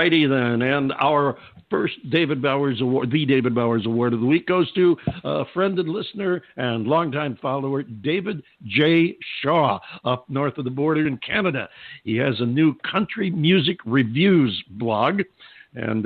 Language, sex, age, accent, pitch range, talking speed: English, male, 60-79, American, 125-165 Hz, 155 wpm